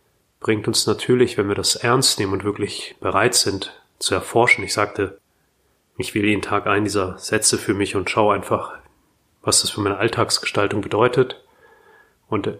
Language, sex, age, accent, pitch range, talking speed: German, male, 30-49, German, 100-125 Hz, 165 wpm